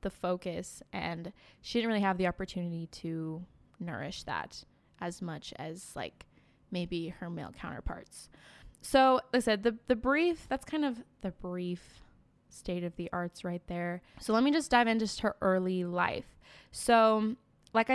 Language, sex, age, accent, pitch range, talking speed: English, female, 10-29, American, 185-225 Hz, 160 wpm